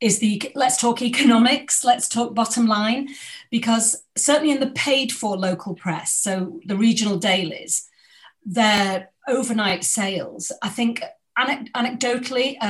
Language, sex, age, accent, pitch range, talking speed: English, female, 40-59, British, 185-240 Hz, 130 wpm